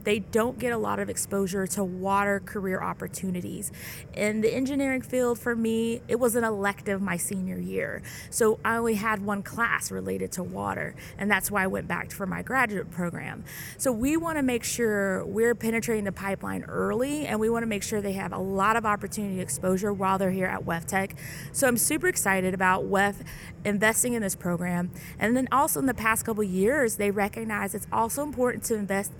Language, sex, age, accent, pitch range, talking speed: English, female, 20-39, American, 190-230 Hz, 200 wpm